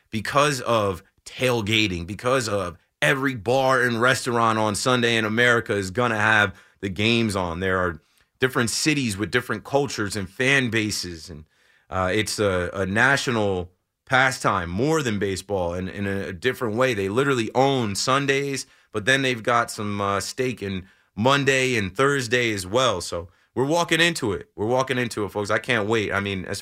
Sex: male